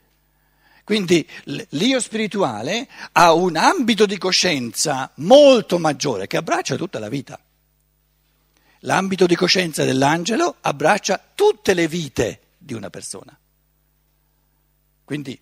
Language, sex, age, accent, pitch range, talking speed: Italian, male, 60-79, native, 140-200 Hz, 105 wpm